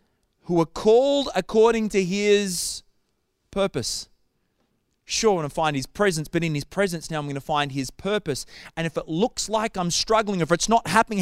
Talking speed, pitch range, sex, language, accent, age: 195 wpm, 150-205 Hz, male, English, Australian, 30-49